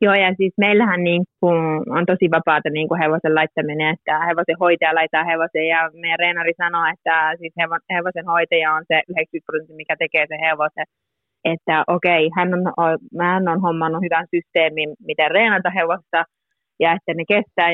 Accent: native